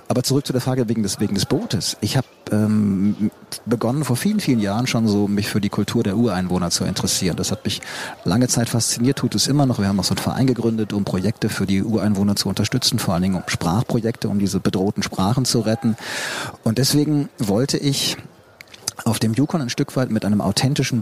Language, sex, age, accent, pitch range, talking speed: German, male, 40-59, German, 105-130 Hz, 210 wpm